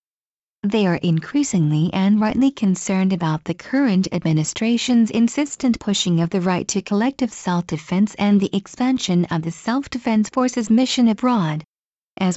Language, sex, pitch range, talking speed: English, female, 185-235 Hz, 135 wpm